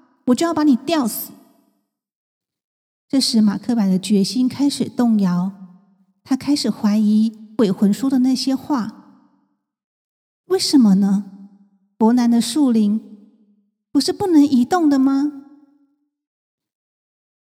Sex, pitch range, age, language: female, 215-270 Hz, 50-69, Chinese